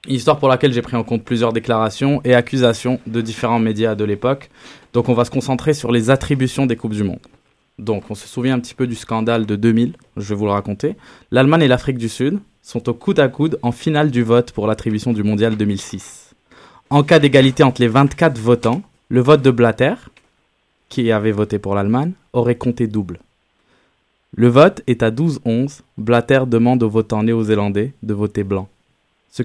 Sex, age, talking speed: male, 20-39, 195 wpm